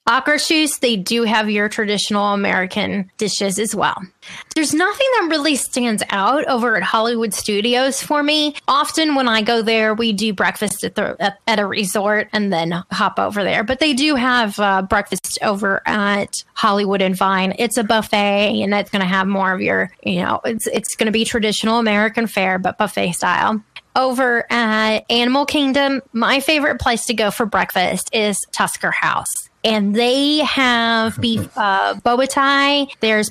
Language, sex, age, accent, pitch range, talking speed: English, female, 20-39, American, 210-255 Hz, 175 wpm